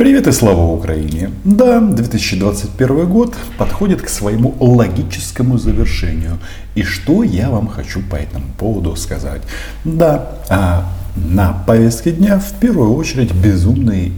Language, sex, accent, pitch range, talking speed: Russian, male, native, 85-125 Hz, 125 wpm